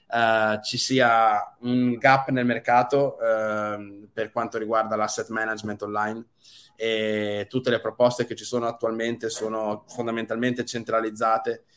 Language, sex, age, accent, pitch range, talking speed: Italian, male, 20-39, native, 110-125 Hz, 130 wpm